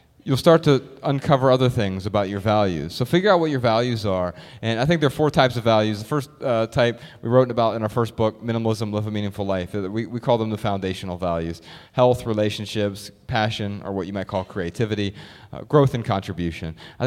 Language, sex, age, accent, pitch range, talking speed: English, male, 30-49, American, 100-130 Hz, 220 wpm